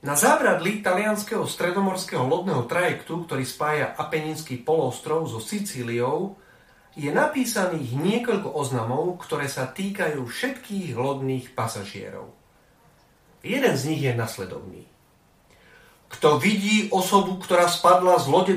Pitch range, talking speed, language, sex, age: 150-220 Hz, 110 wpm, Slovak, male, 40-59